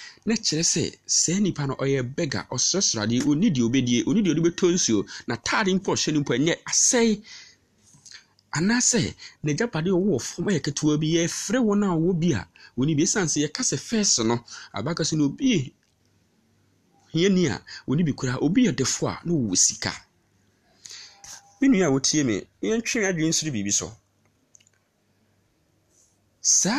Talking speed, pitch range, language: 125 wpm, 130-195 Hz, English